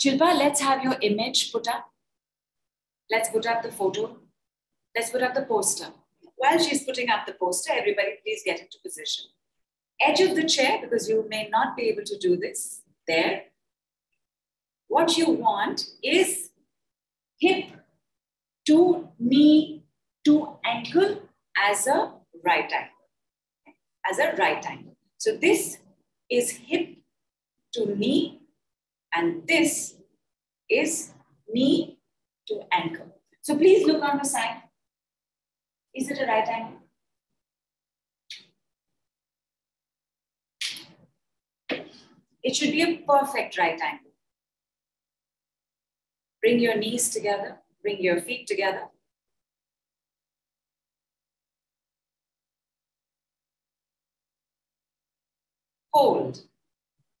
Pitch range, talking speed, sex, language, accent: 230-335 Hz, 105 wpm, female, English, Indian